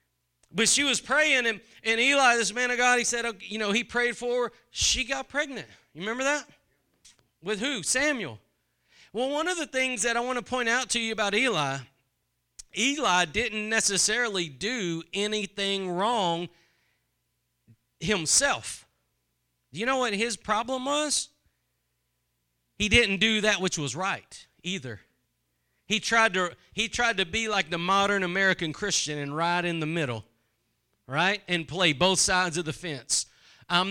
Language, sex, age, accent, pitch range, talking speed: English, male, 40-59, American, 135-225 Hz, 160 wpm